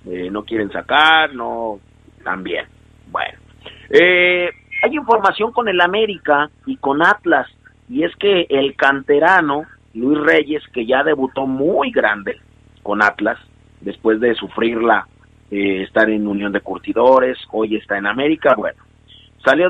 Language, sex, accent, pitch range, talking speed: Spanish, male, Mexican, 115-175 Hz, 135 wpm